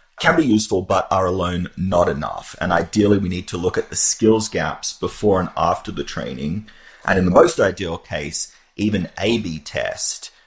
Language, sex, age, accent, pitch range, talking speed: English, male, 30-49, Australian, 85-105 Hz, 185 wpm